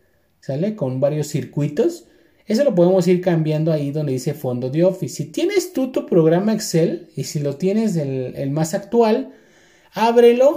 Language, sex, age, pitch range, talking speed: Spanish, male, 30-49, 155-210 Hz, 170 wpm